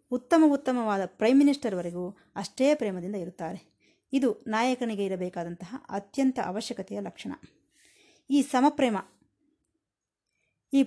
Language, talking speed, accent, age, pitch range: Kannada, 90 wpm, native, 20-39, 190-265 Hz